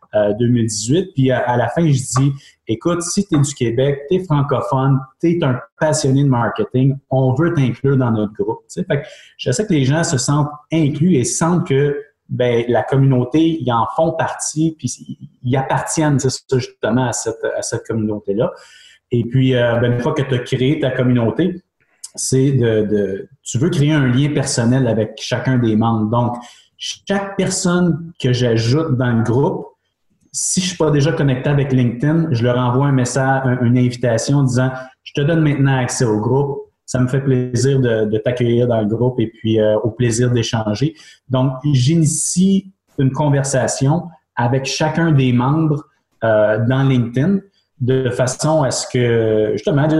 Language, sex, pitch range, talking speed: French, male, 120-155 Hz, 175 wpm